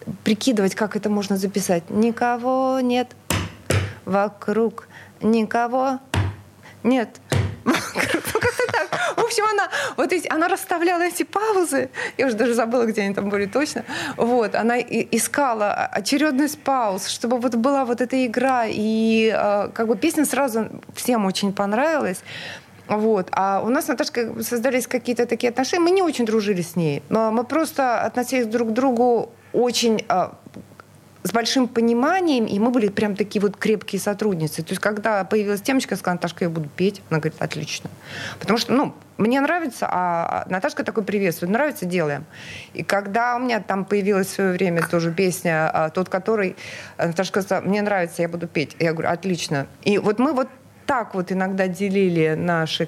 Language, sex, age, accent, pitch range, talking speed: Russian, female, 20-39, native, 180-250 Hz, 155 wpm